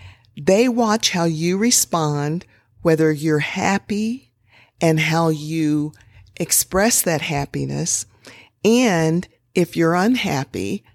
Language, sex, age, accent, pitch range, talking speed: English, female, 50-69, American, 150-210 Hz, 100 wpm